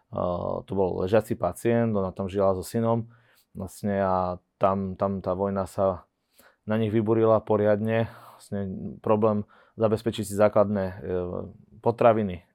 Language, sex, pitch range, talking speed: Slovak, male, 95-110 Hz, 135 wpm